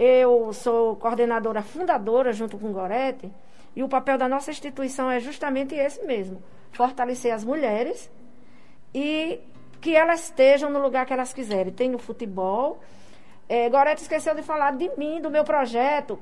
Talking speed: 160 wpm